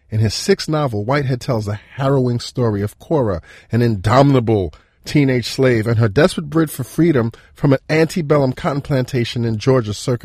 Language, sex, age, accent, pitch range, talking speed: English, male, 40-59, American, 110-140 Hz, 170 wpm